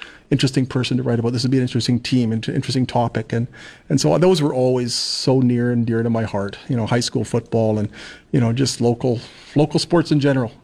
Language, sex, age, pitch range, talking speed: English, male, 40-59, 120-145 Hz, 230 wpm